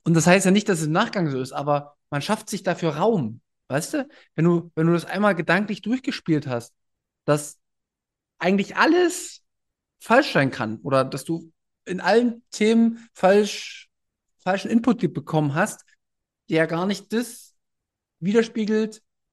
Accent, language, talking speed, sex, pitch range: German, German, 155 wpm, male, 135-195 Hz